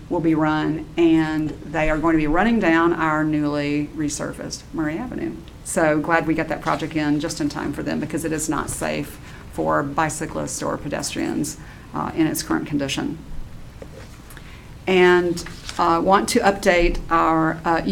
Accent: American